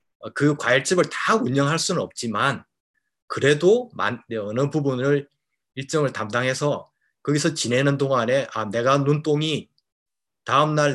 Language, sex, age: Korean, male, 30-49